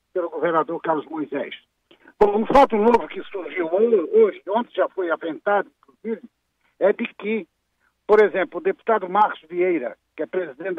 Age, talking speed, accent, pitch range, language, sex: 60-79, 160 wpm, Brazilian, 185-235 Hz, Portuguese, male